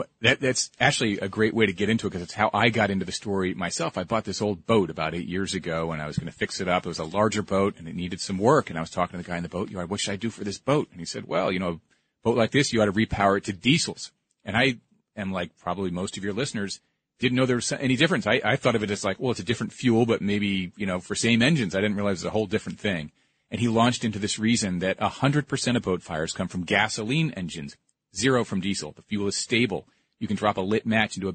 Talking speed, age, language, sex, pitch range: 295 wpm, 40-59, English, male, 95-120 Hz